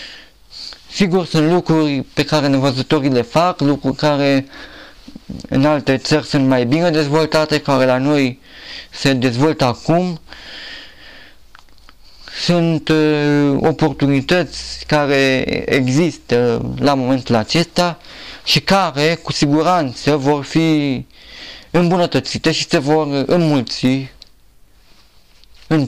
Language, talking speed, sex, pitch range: Romanian, 95 wpm, male, 135-165 Hz